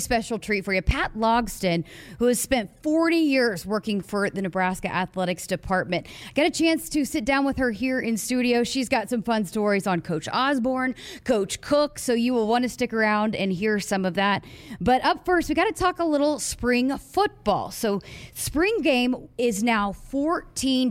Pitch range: 200-265 Hz